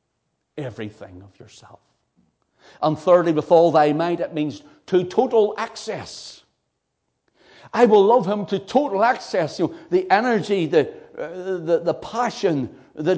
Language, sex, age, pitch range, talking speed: English, male, 60-79, 115-185 Hz, 125 wpm